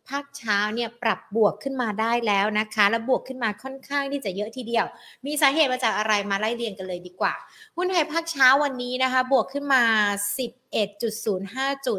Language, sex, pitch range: Thai, female, 200-250 Hz